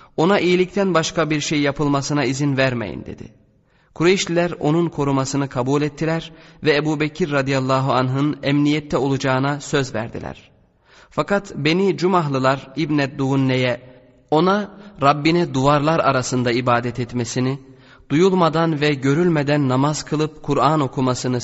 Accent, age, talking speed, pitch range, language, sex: native, 30-49, 115 wpm, 130-155 Hz, Turkish, male